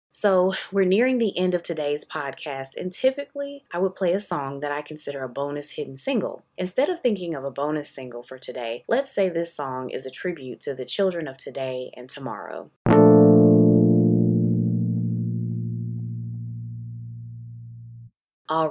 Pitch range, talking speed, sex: 130-180 Hz, 150 wpm, female